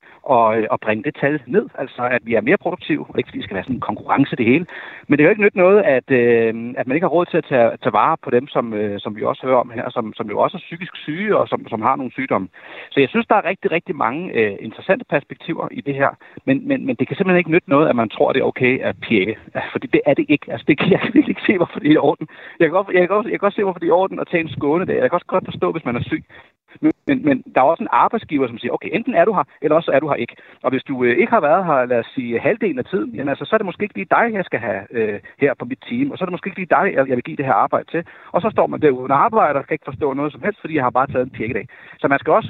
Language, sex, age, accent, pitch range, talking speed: Danish, male, 40-59, native, 130-195 Hz, 330 wpm